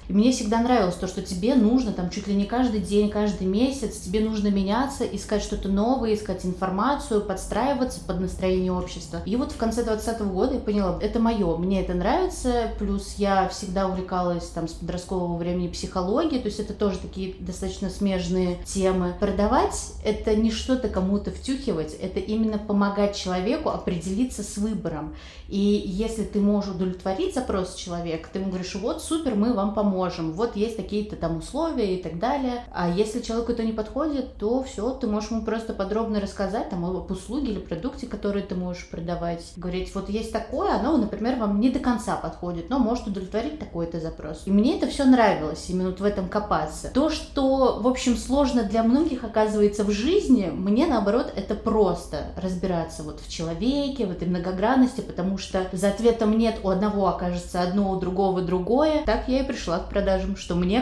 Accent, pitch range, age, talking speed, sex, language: native, 185-230 Hz, 20-39, 185 wpm, female, Russian